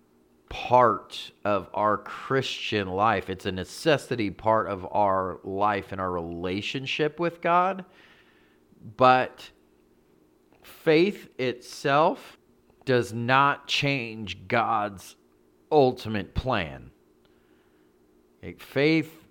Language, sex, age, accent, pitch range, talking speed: English, male, 40-59, American, 85-120 Hz, 85 wpm